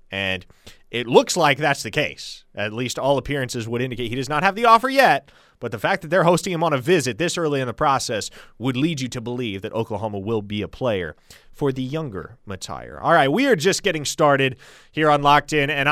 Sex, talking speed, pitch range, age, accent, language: male, 235 wpm, 120-180 Hz, 30-49, American, English